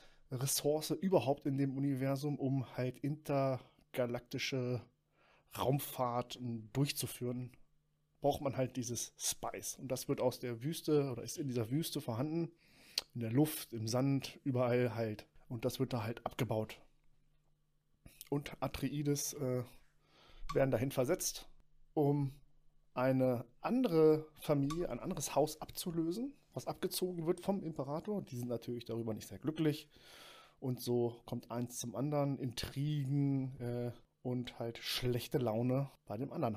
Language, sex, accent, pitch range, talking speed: German, male, German, 120-150 Hz, 135 wpm